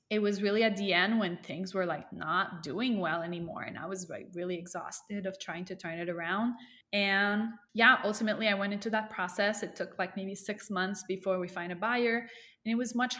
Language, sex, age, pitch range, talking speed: English, female, 20-39, 170-205 Hz, 225 wpm